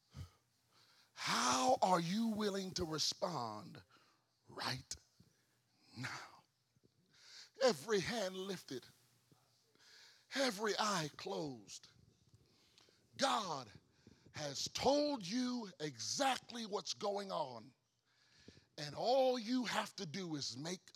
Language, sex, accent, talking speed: English, male, American, 85 wpm